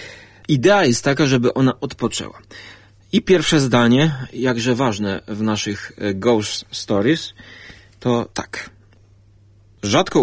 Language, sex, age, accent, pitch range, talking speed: Polish, male, 30-49, native, 100-125 Hz, 105 wpm